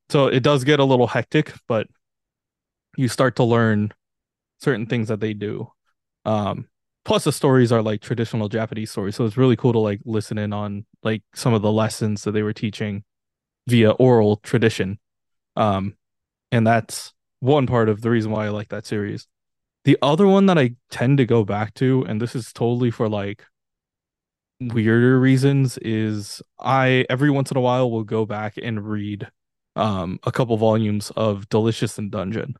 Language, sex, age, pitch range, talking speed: English, male, 20-39, 105-130 Hz, 180 wpm